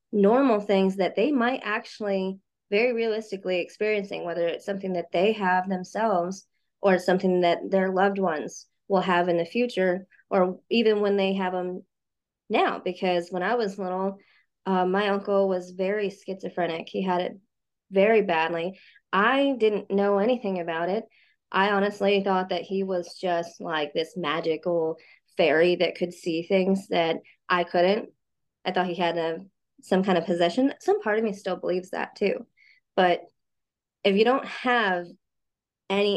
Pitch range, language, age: 175-200 Hz, English, 20-39